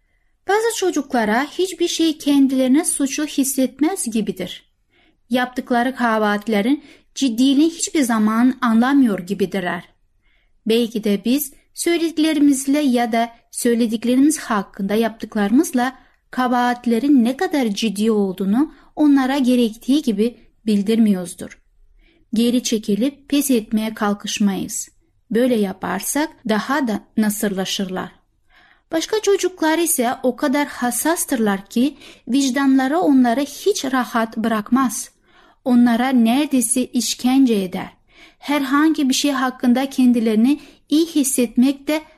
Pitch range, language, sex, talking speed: 225-290 Hz, Turkish, female, 95 wpm